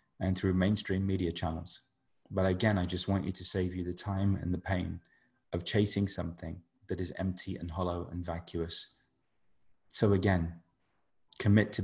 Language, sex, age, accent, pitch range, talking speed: English, male, 30-49, British, 90-105 Hz, 165 wpm